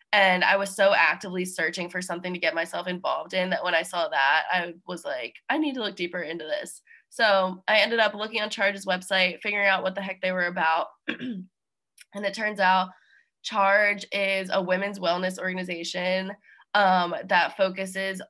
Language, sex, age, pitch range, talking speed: English, female, 20-39, 180-200 Hz, 185 wpm